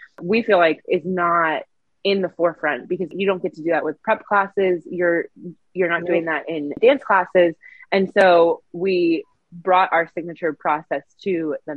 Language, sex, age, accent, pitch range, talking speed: English, female, 20-39, American, 165-200 Hz, 180 wpm